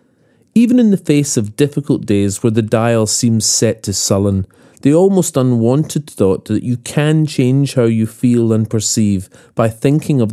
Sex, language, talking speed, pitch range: male, English, 175 wpm, 110-145 Hz